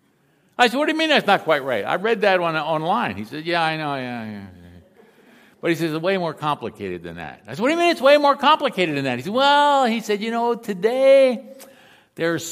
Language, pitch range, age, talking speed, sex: English, 175-235 Hz, 60-79, 250 wpm, male